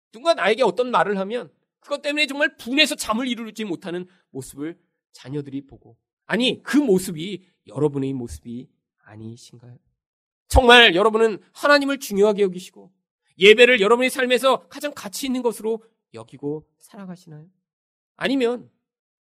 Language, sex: Korean, male